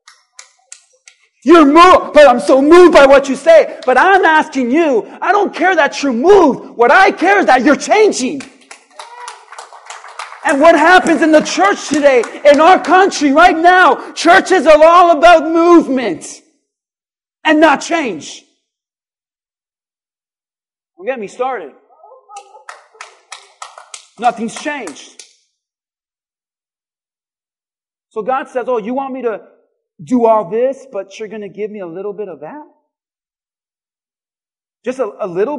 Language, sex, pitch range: English, male, 265-350 Hz